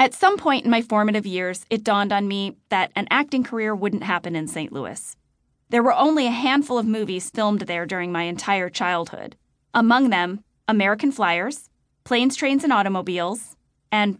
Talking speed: 180 wpm